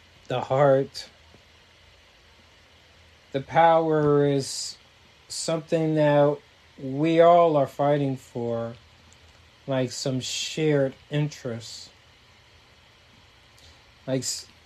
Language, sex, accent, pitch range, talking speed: English, male, American, 110-150 Hz, 70 wpm